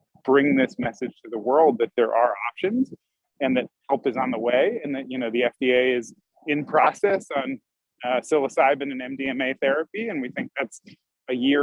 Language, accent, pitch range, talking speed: English, American, 135-175 Hz, 195 wpm